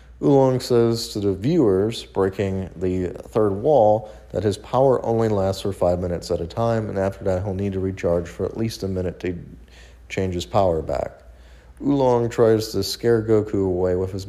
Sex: male